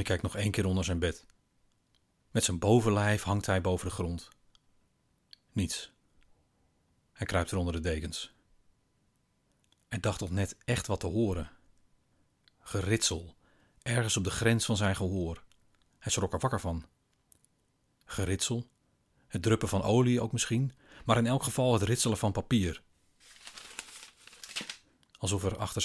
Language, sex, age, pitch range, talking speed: Dutch, male, 40-59, 90-110 Hz, 145 wpm